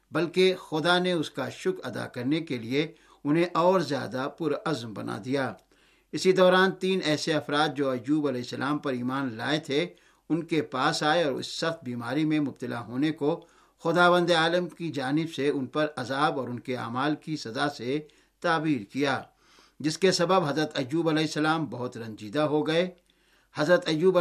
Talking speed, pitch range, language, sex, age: 175 wpm, 145-170 Hz, Urdu, male, 60-79